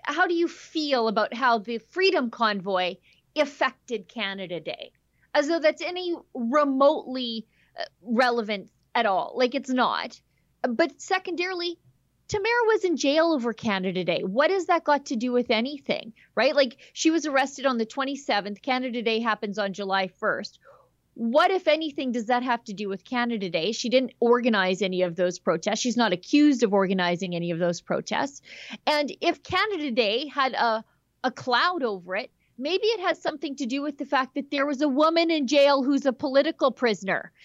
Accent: American